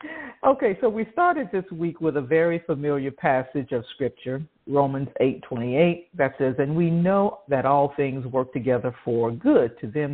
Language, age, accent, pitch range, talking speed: English, 50-69, American, 130-180 Hz, 170 wpm